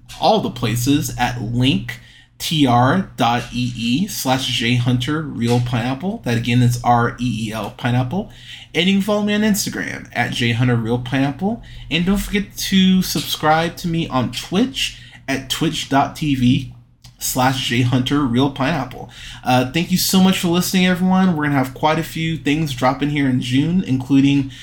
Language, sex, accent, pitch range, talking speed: English, male, American, 120-150 Hz, 145 wpm